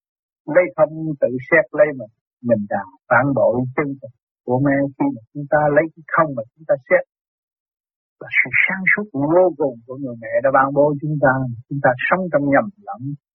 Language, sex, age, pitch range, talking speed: Vietnamese, male, 60-79, 140-185 Hz, 200 wpm